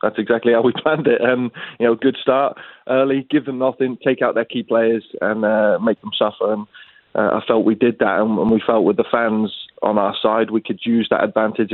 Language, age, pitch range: English, 20-39, 110-120 Hz